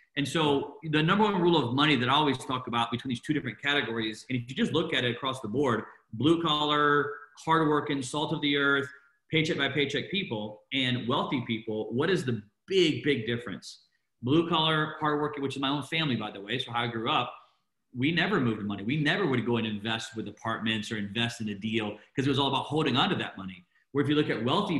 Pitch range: 120-160 Hz